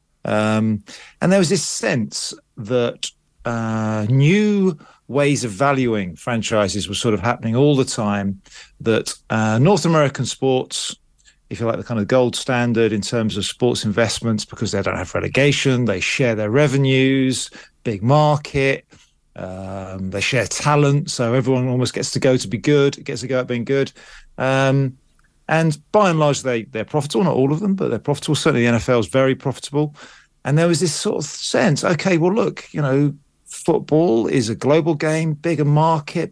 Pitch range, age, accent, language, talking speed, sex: 115-150 Hz, 40-59, British, English, 180 wpm, male